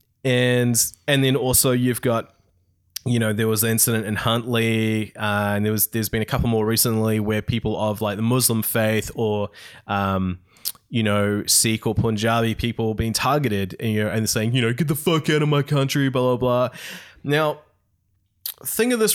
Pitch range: 110-140 Hz